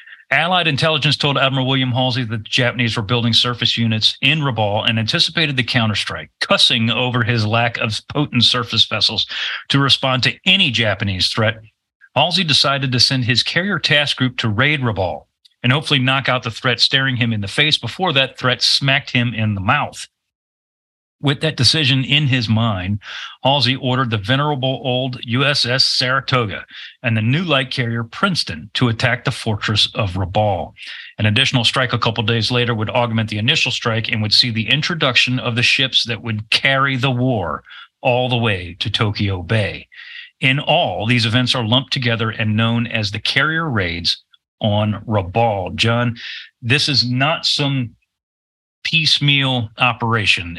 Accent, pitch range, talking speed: American, 110-135 Hz, 165 wpm